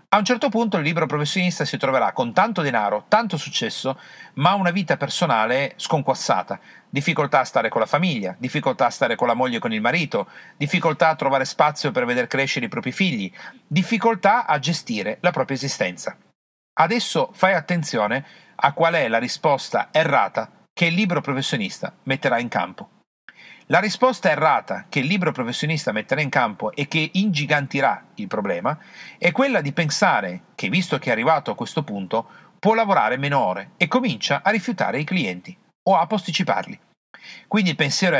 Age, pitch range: 40-59, 135-190 Hz